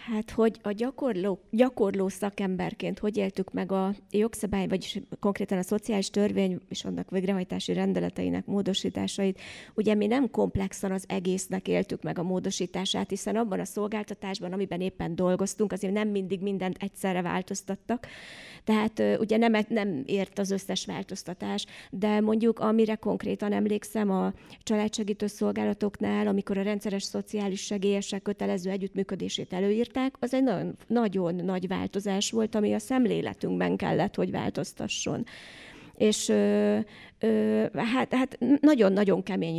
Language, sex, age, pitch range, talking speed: Hungarian, female, 30-49, 195-215 Hz, 135 wpm